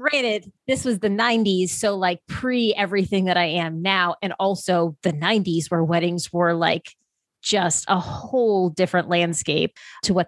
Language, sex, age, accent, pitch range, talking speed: English, female, 20-39, American, 175-220 Hz, 160 wpm